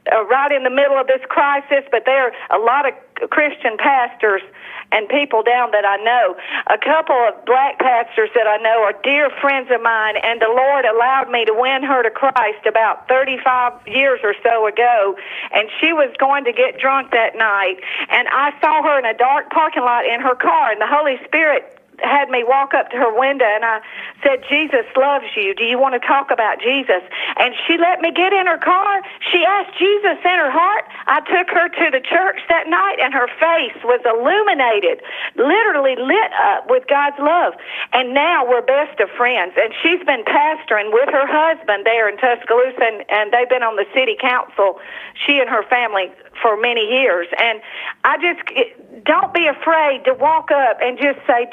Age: 50-69